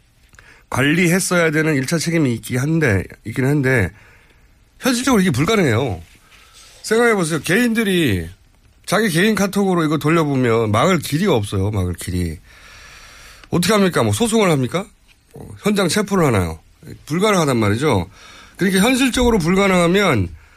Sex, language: male, Korean